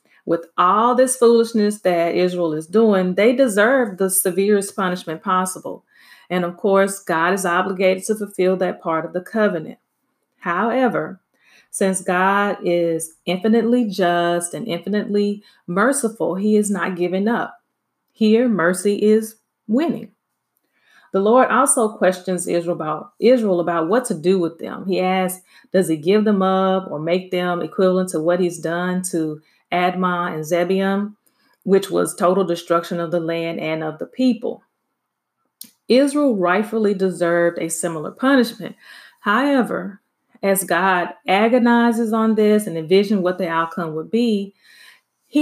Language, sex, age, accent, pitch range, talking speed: English, female, 30-49, American, 175-220 Hz, 140 wpm